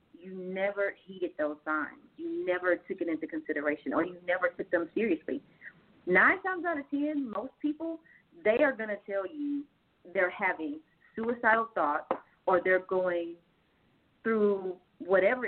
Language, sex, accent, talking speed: English, female, American, 150 wpm